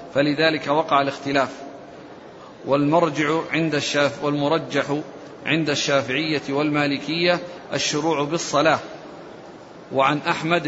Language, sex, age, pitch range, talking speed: Arabic, male, 40-59, 145-165 Hz, 80 wpm